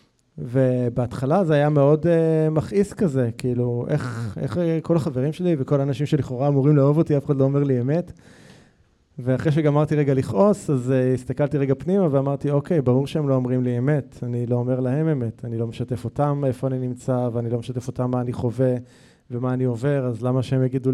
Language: Hebrew